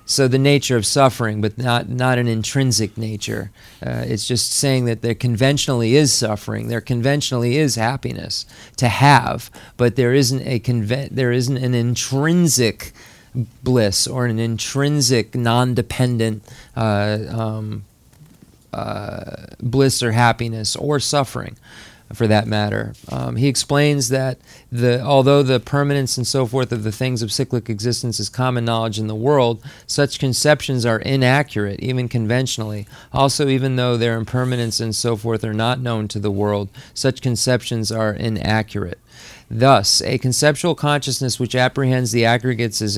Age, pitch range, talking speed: 40-59, 110-130 Hz, 150 wpm